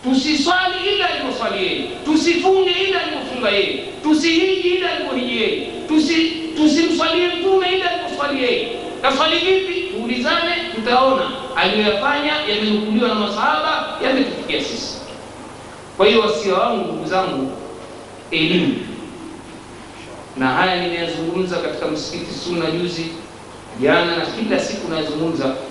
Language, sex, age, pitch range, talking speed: Swahili, male, 50-69, 190-305 Hz, 100 wpm